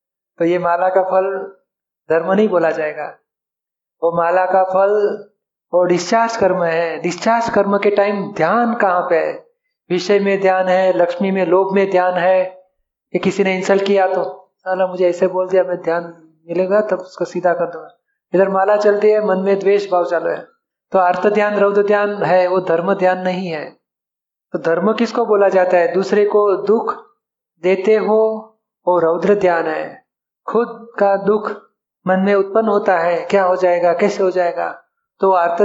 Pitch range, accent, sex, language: 175-205 Hz, native, male, Hindi